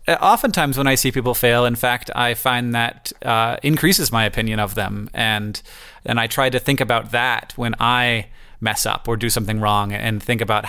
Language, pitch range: English, 110-130 Hz